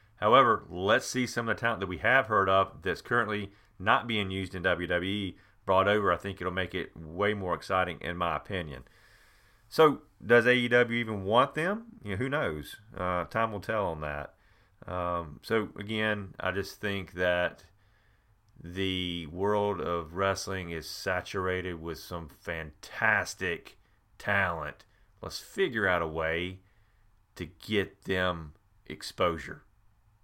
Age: 40-59